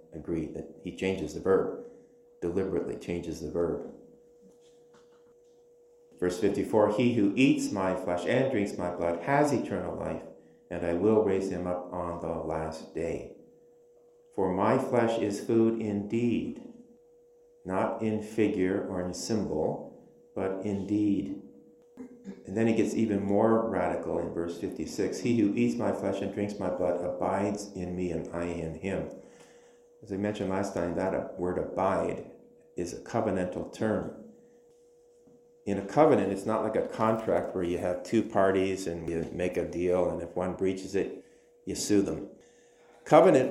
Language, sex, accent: English, male, American